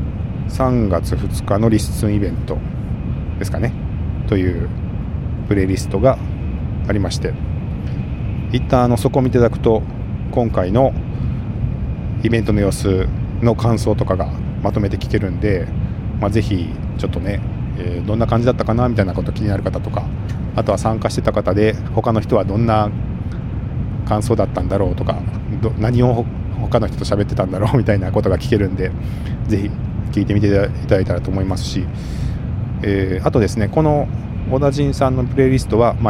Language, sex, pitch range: Japanese, male, 100-120 Hz